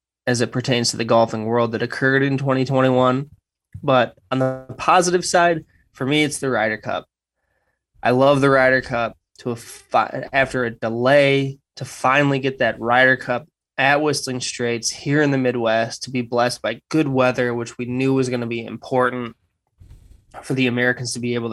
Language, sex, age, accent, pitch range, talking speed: English, male, 20-39, American, 115-130 Hz, 185 wpm